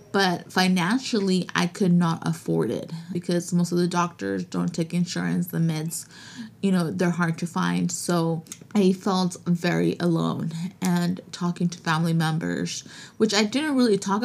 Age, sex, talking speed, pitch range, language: 20-39, female, 160 wpm, 160-195 Hz, English